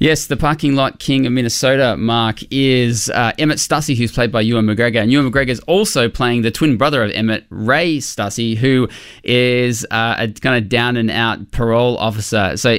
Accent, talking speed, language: Australian, 195 wpm, English